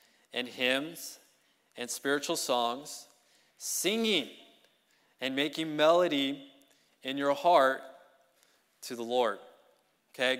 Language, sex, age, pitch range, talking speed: English, male, 20-39, 140-175 Hz, 90 wpm